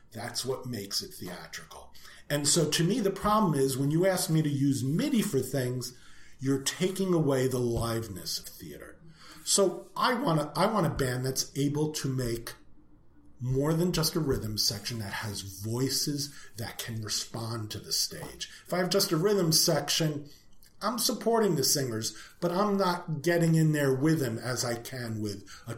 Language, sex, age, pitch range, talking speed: English, male, 40-59, 115-170 Hz, 175 wpm